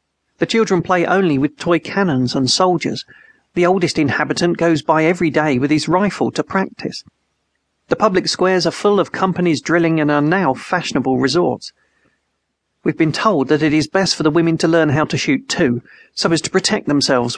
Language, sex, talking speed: English, male, 190 wpm